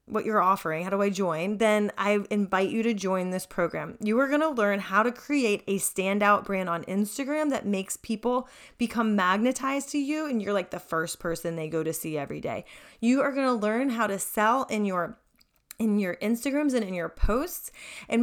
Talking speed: 215 wpm